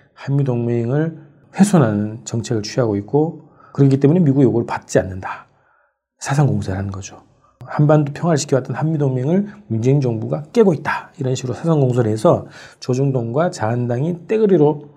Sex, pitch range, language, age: male, 115-150 Hz, Korean, 40-59